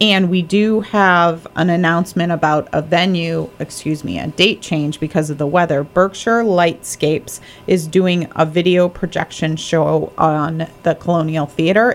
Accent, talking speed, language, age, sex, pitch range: American, 150 wpm, English, 30-49, female, 150-180 Hz